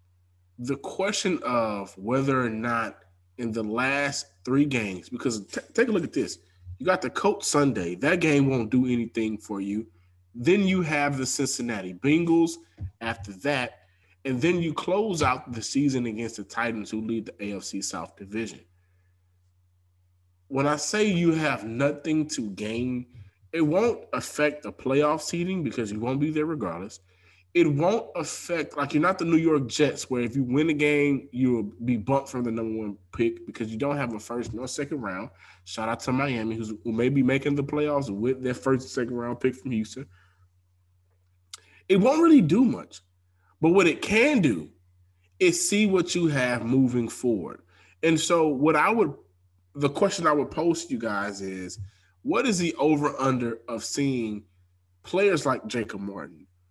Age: 20-39